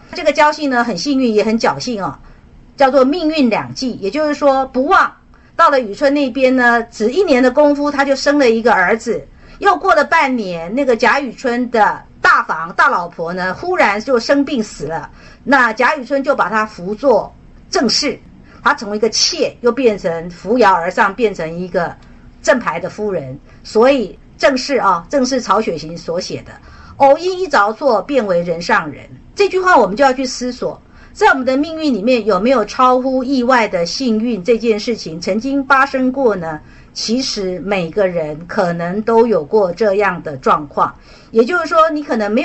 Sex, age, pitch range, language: female, 50-69, 205-280 Hz, Chinese